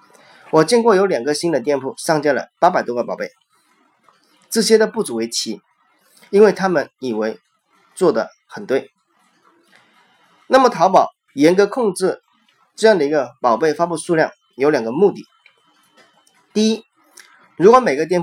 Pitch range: 140-215 Hz